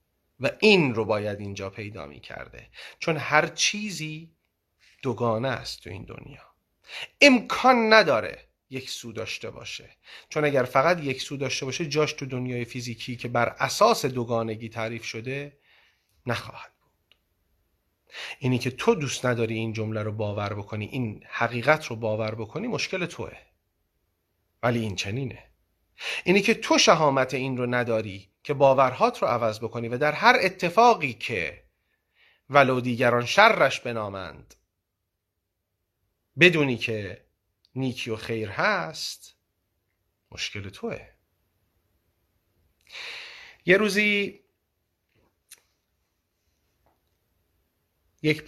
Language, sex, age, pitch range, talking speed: Persian, male, 30-49, 90-140 Hz, 115 wpm